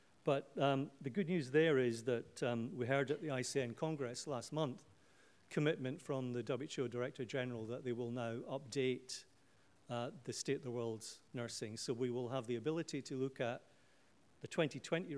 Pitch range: 120-145 Hz